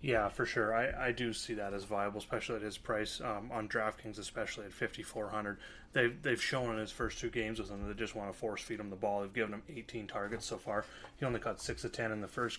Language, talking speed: English, 260 wpm